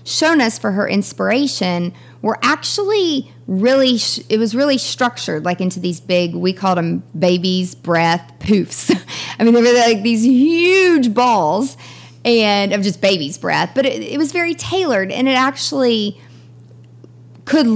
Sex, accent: female, American